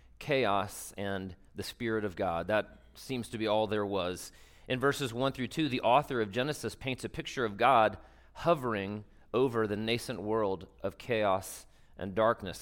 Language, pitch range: English, 100-125 Hz